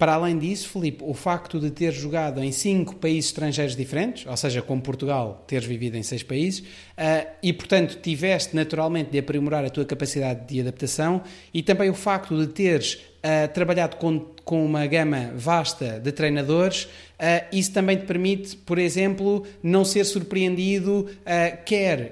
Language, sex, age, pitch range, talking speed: Portuguese, male, 30-49, 145-185 Hz, 155 wpm